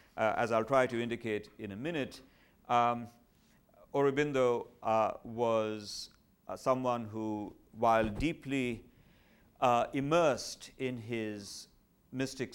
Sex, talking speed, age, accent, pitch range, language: male, 110 wpm, 50-69, Indian, 105-140 Hz, English